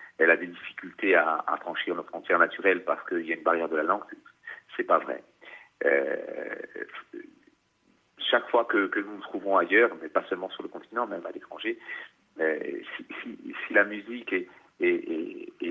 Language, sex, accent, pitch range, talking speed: French, male, French, 330-440 Hz, 185 wpm